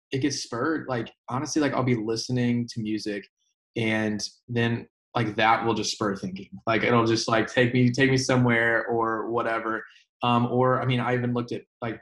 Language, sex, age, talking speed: English, male, 20-39, 195 wpm